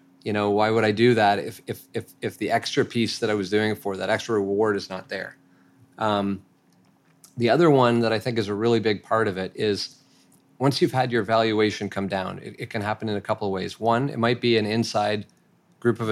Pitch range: 100-115 Hz